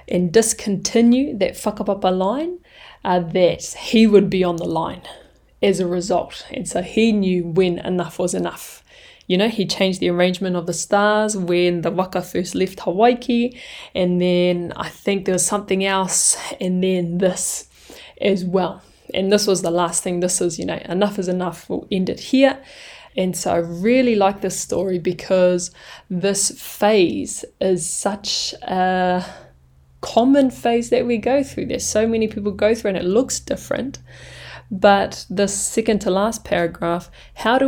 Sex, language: female, English